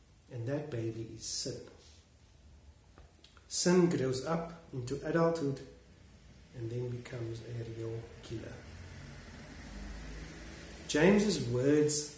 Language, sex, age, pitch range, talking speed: English, male, 40-59, 115-155 Hz, 90 wpm